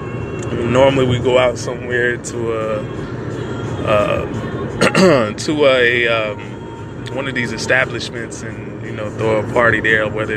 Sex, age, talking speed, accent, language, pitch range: male, 20-39, 135 wpm, American, English, 110-125 Hz